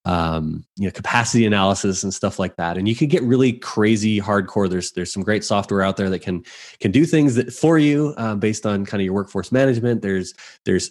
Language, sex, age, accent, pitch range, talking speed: English, male, 20-39, American, 95-120 Hz, 225 wpm